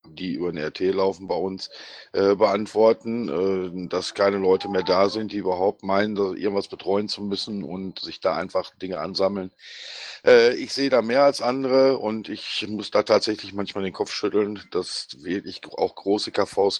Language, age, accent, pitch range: German, 50-69, German, 105-130 Hz